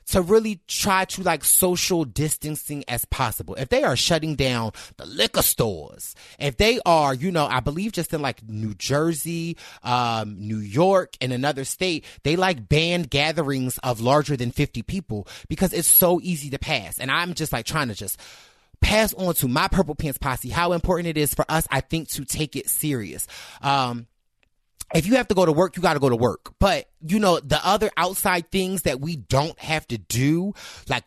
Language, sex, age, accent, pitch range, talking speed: English, male, 30-49, American, 135-190 Hz, 200 wpm